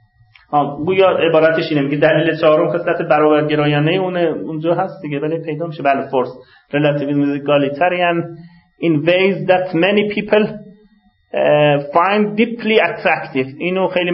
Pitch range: 150-195 Hz